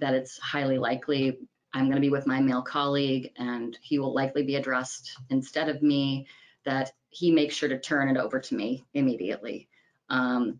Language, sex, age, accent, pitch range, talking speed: English, female, 30-49, American, 130-160 Hz, 185 wpm